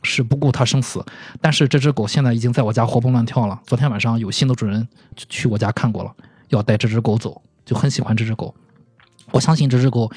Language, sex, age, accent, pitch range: Chinese, male, 20-39, native, 115-145 Hz